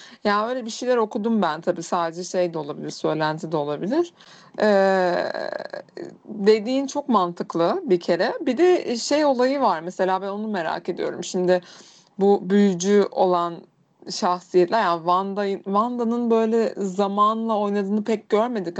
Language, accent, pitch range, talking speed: Turkish, native, 175-205 Hz, 135 wpm